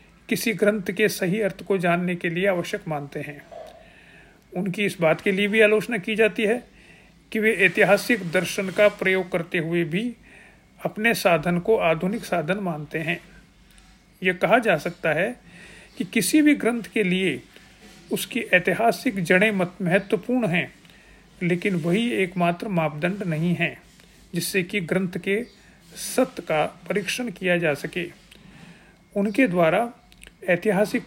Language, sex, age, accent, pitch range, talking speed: Hindi, male, 50-69, native, 175-210 Hz, 145 wpm